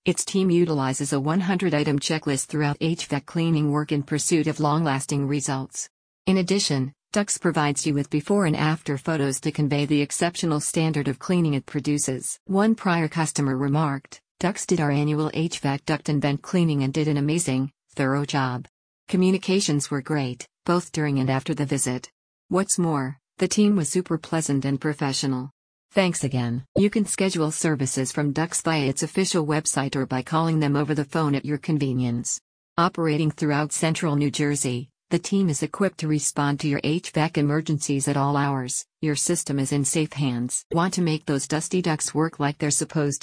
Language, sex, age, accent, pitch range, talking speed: English, female, 50-69, American, 140-165 Hz, 175 wpm